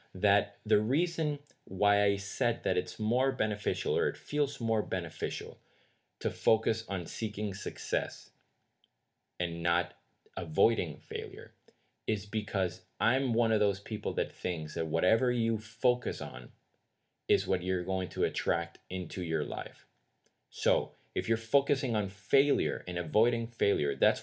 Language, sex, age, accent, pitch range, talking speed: English, male, 30-49, American, 90-115 Hz, 140 wpm